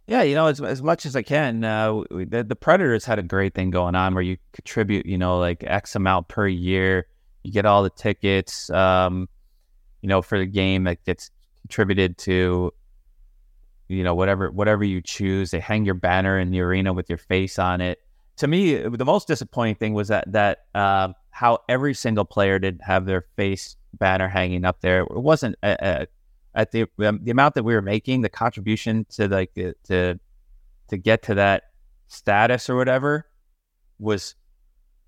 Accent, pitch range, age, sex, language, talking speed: American, 90-105 Hz, 30-49, male, English, 190 wpm